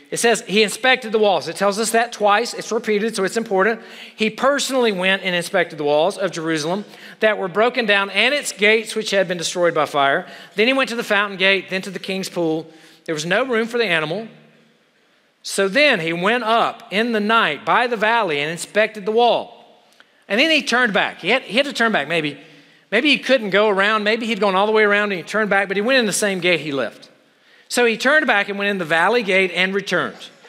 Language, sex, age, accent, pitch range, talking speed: English, male, 40-59, American, 180-235 Hz, 240 wpm